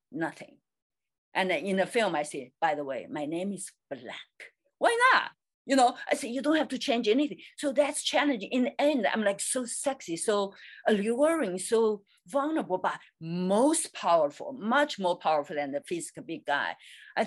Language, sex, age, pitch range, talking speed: English, female, 50-69, 175-270 Hz, 180 wpm